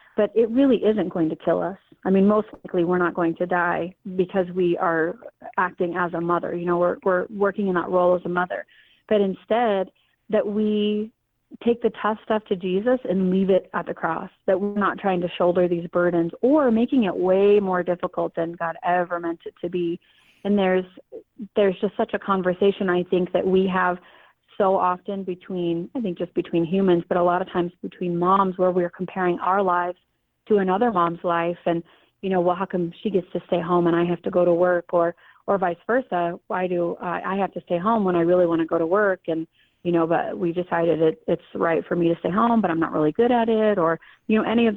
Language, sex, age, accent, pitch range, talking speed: English, female, 30-49, American, 175-205 Hz, 230 wpm